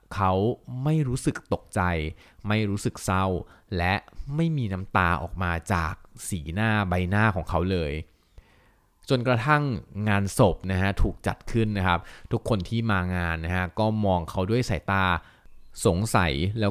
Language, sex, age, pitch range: Thai, male, 20-39, 90-110 Hz